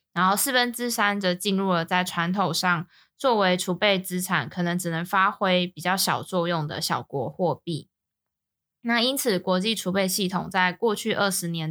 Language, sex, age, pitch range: Chinese, female, 20-39, 170-200 Hz